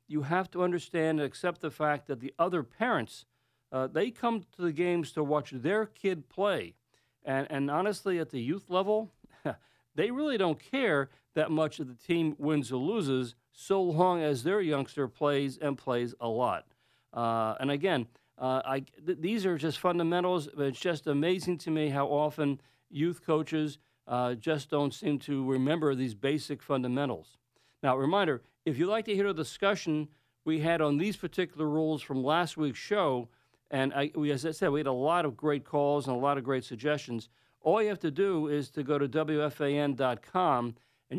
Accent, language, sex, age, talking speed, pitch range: American, English, male, 50-69, 185 wpm, 135-165 Hz